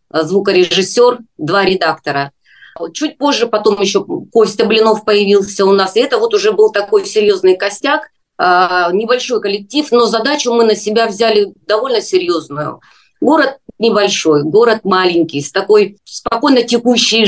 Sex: female